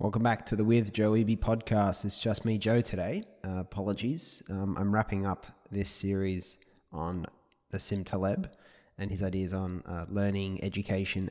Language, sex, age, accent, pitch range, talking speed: English, male, 20-39, Australian, 90-105 Hz, 165 wpm